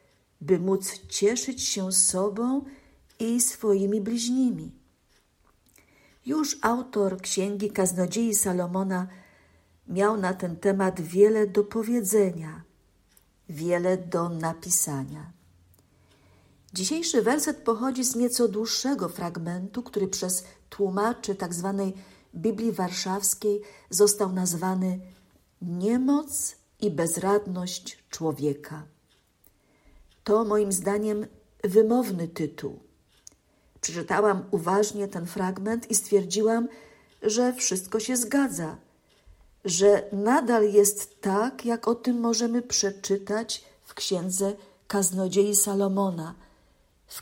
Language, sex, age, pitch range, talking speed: Polish, female, 50-69, 170-215 Hz, 90 wpm